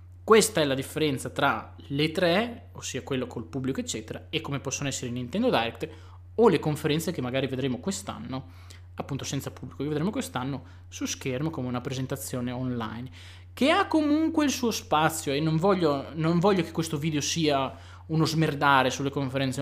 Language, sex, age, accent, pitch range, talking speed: Italian, male, 20-39, native, 120-150 Hz, 175 wpm